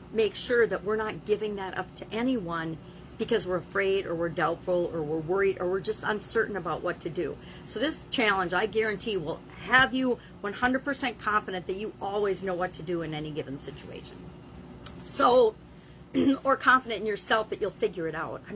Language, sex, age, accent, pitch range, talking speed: English, female, 50-69, American, 185-260 Hz, 190 wpm